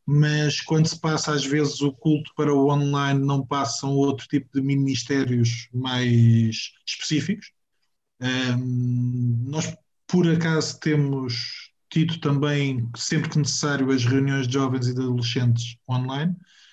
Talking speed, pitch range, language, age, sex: 135 wpm, 135-155 Hz, Portuguese, 20-39, male